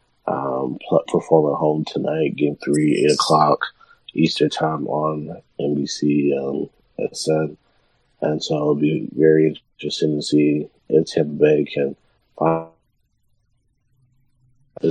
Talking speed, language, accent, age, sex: 115 wpm, English, American, 30-49, male